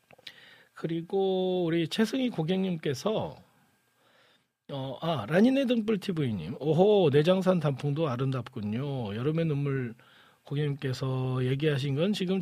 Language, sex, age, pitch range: Korean, male, 40-59, 135-195 Hz